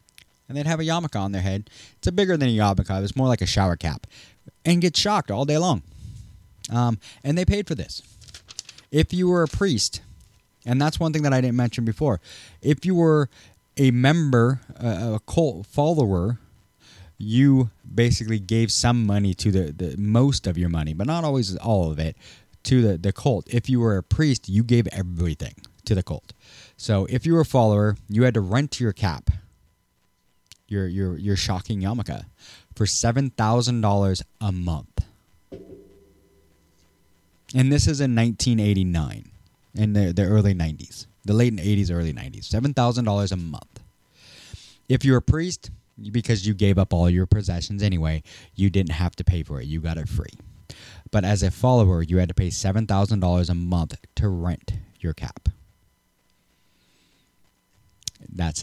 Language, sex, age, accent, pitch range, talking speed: English, male, 30-49, American, 90-120 Hz, 170 wpm